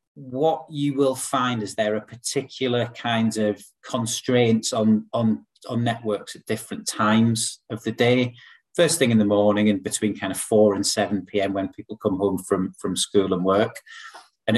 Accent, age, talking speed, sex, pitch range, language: British, 30-49, 180 wpm, male, 105-125 Hz, English